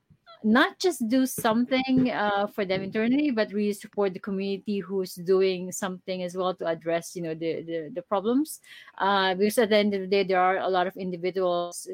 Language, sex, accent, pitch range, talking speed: English, female, Filipino, 180-225 Hz, 200 wpm